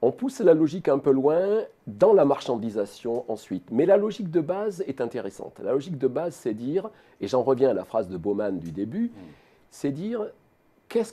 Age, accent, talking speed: 40-59, French, 200 wpm